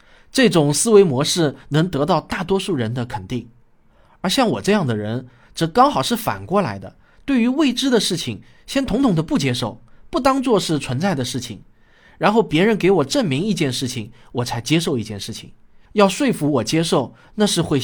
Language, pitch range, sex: Chinese, 120-180 Hz, male